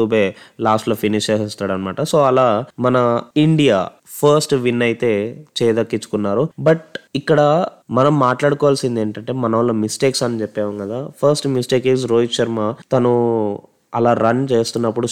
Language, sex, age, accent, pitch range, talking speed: Telugu, male, 20-39, native, 115-145 Hz, 125 wpm